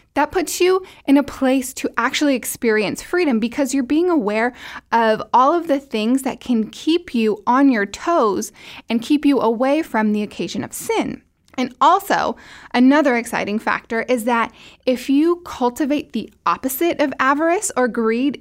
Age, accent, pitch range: 10-29, American, 230-280 Hz